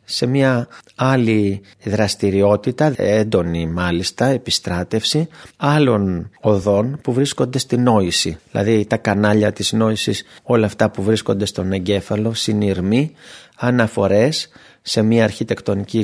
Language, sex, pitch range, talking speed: Greek, male, 100-120 Hz, 110 wpm